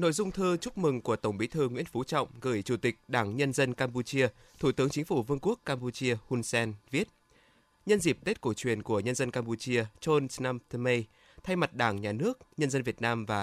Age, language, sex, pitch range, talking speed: 20-39, Vietnamese, male, 115-145 Hz, 230 wpm